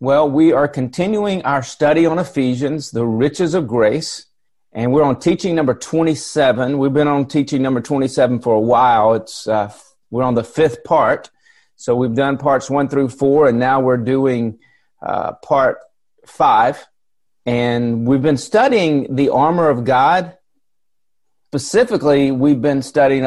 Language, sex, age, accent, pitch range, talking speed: English, male, 40-59, American, 125-155 Hz, 155 wpm